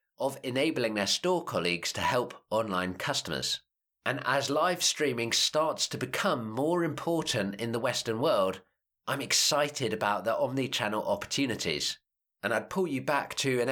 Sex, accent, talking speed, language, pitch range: male, British, 155 wpm, English, 110-155 Hz